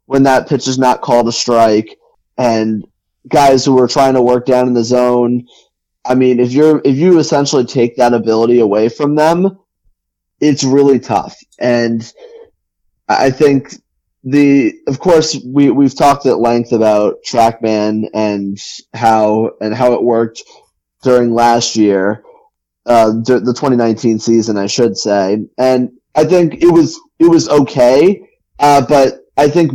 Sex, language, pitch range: male, English, 120-155 Hz